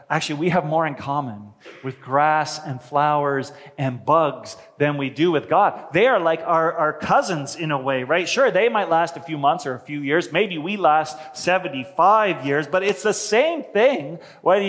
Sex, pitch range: male, 135-190 Hz